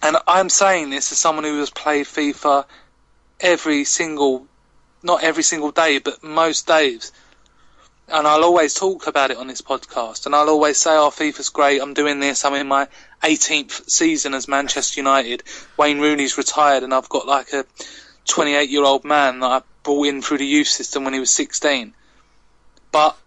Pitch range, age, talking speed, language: 135-155 Hz, 20-39, 180 wpm, English